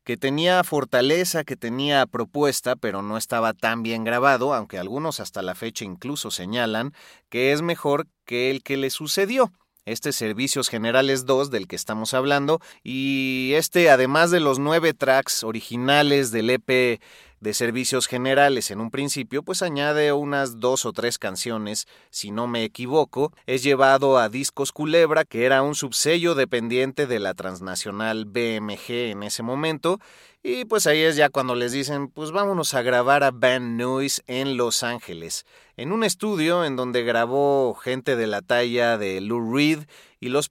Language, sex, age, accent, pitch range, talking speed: Spanish, male, 30-49, Mexican, 115-145 Hz, 165 wpm